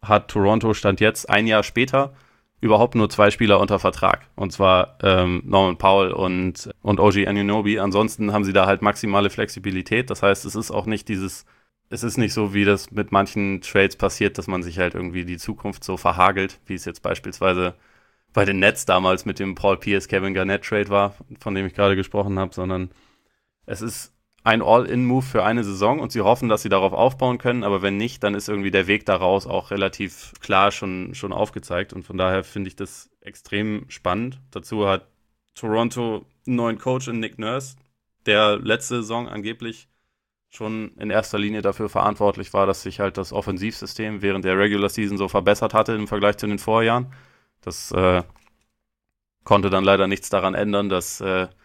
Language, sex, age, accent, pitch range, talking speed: German, male, 20-39, German, 95-110 Hz, 190 wpm